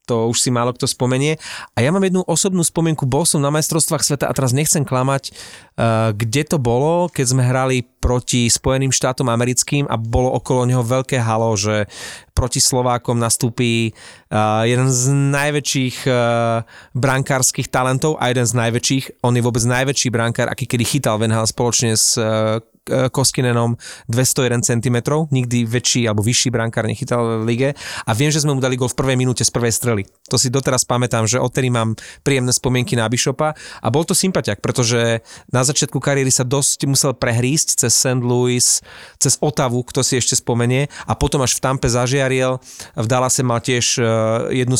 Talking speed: 170 wpm